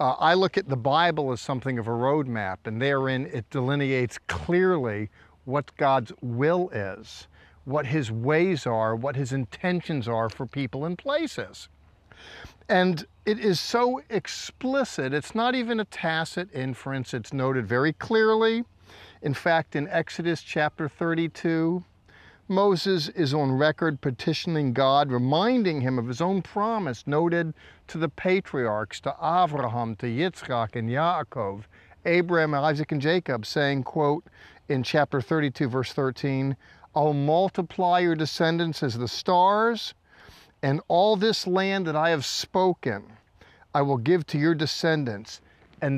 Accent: American